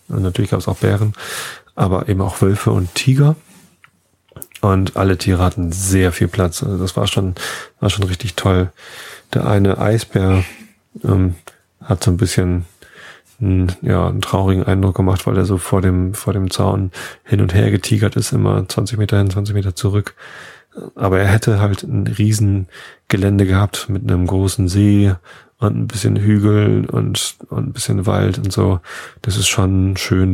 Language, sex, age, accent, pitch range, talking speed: German, male, 30-49, German, 95-105 Hz, 170 wpm